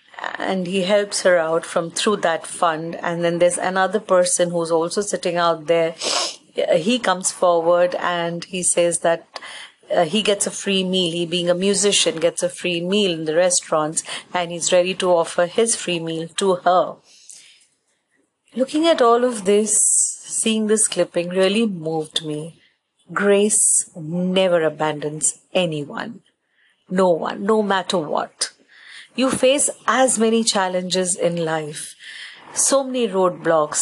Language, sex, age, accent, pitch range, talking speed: English, female, 40-59, Indian, 170-210 Hz, 145 wpm